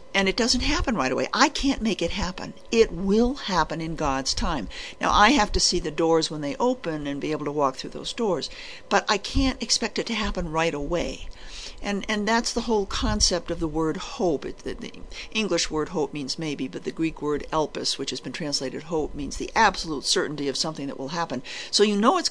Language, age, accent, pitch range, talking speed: English, 60-79, American, 160-215 Hz, 230 wpm